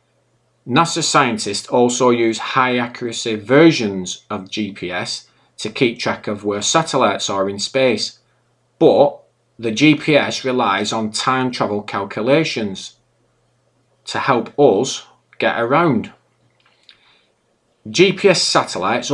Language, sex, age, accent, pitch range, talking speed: English, male, 40-59, British, 110-135 Hz, 105 wpm